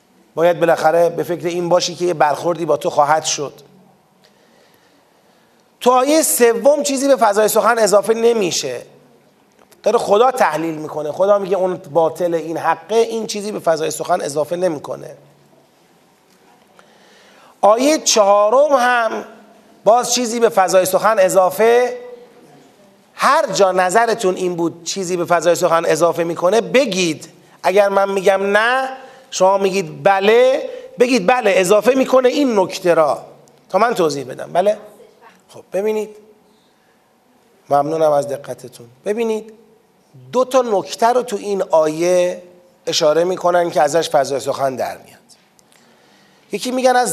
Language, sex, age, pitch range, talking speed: Persian, male, 30-49, 170-235 Hz, 130 wpm